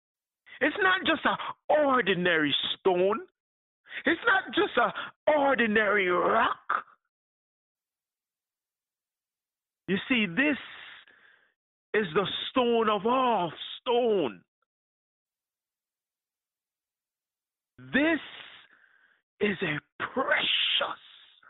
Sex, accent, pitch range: male, American, 210-330 Hz